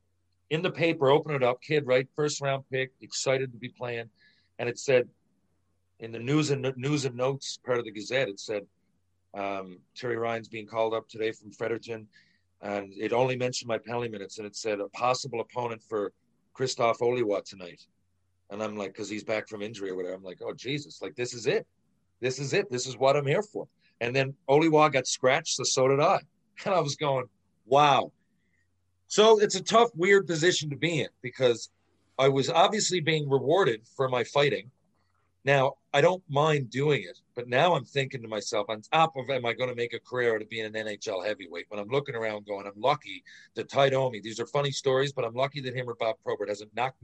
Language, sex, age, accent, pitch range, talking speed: English, male, 40-59, American, 105-135 Hz, 215 wpm